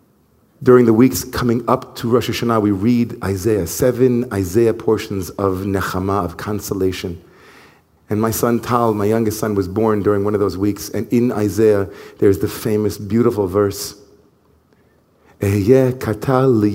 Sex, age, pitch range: male, 40-59, 100-120 Hz